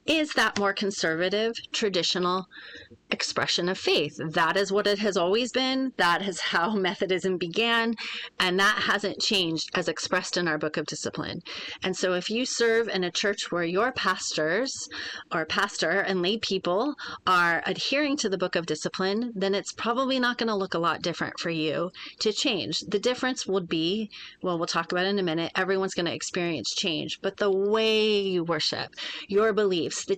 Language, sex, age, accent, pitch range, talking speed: English, female, 30-49, American, 170-205 Hz, 185 wpm